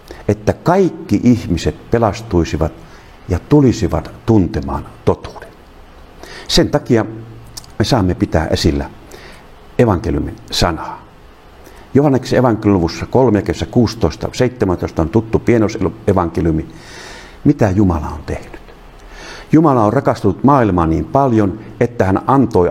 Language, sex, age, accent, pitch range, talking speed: Finnish, male, 50-69, native, 85-115 Hz, 90 wpm